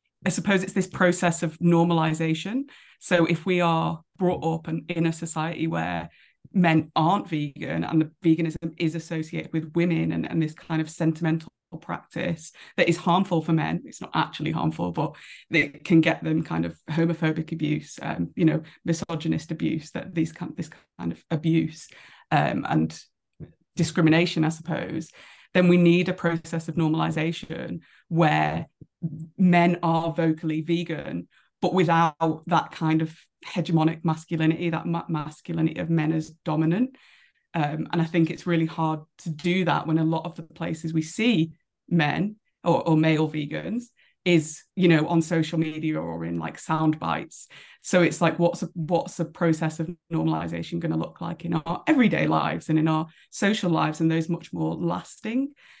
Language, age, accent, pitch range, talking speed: English, 20-39, British, 160-170 Hz, 170 wpm